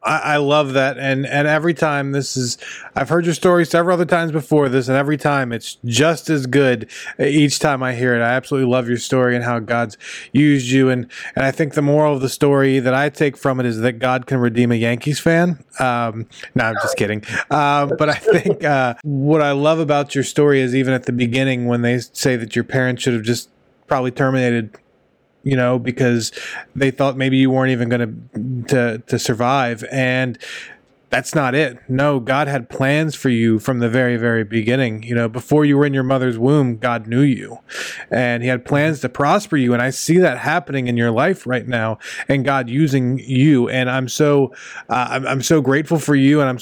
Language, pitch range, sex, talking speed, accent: English, 125-145 Hz, male, 215 wpm, American